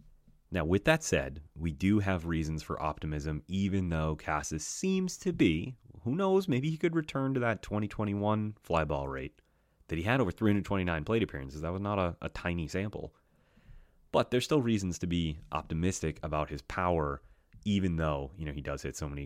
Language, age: English, 30-49